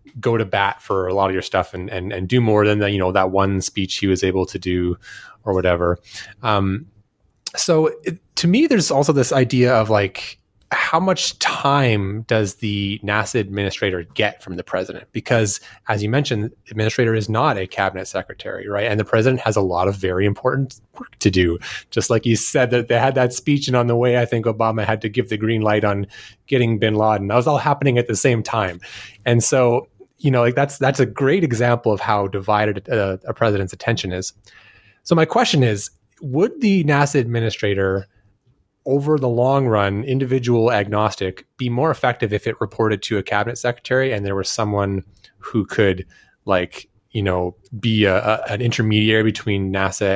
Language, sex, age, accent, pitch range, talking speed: English, male, 30-49, American, 100-125 Hz, 200 wpm